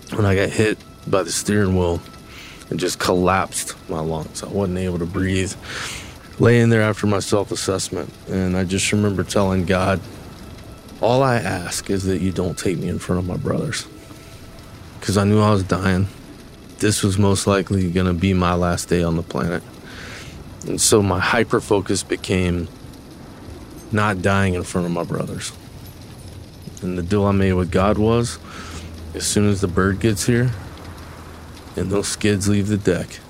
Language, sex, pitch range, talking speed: English, male, 85-100 Hz, 170 wpm